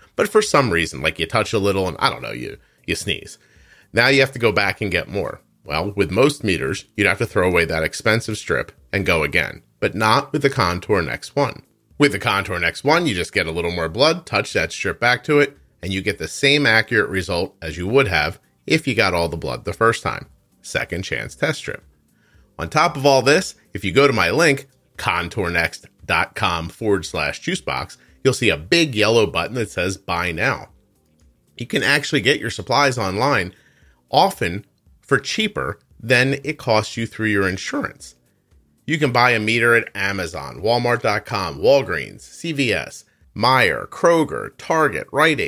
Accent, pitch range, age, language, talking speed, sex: American, 95-130 Hz, 30-49, English, 190 wpm, male